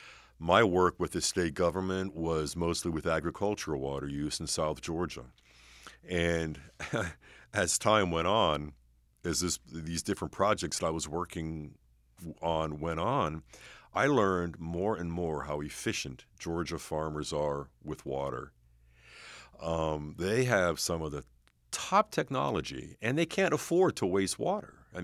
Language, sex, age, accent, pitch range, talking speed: English, male, 50-69, American, 75-90 Hz, 140 wpm